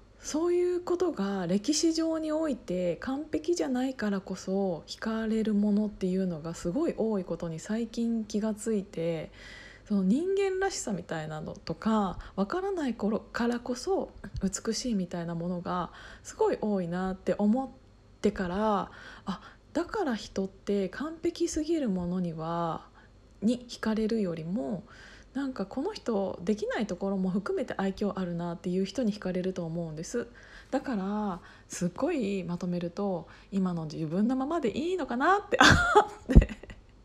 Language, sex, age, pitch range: Japanese, female, 20-39, 185-260 Hz